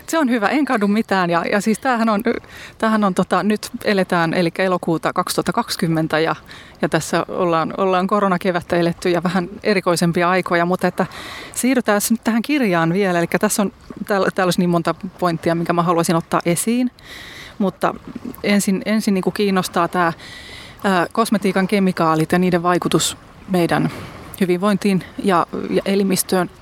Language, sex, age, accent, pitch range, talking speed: Finnish, female, 20-39, native, 170-210 Hz, 155 wpm